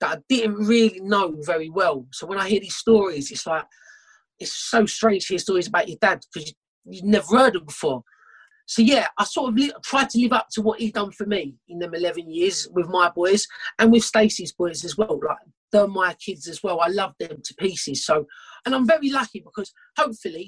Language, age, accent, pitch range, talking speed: English, 40-59, British, 175-230 Hz, 225 wpm